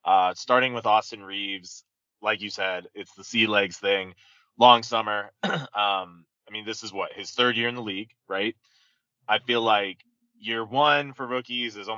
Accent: American